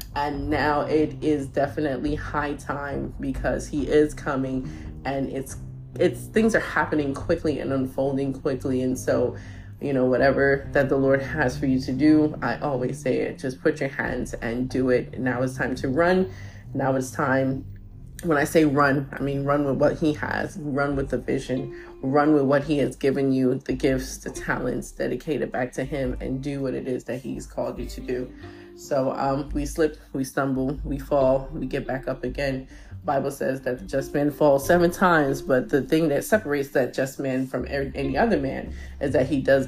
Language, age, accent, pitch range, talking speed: English, 20-39, American, 130-145 Hz, 200 wpm